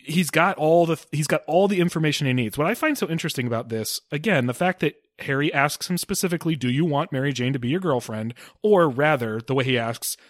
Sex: male